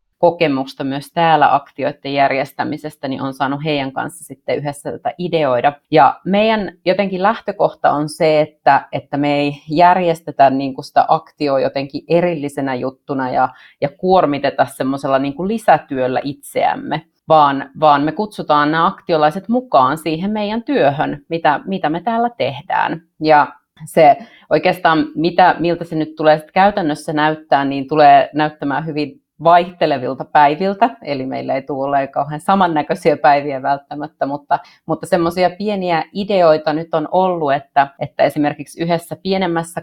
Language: Finnish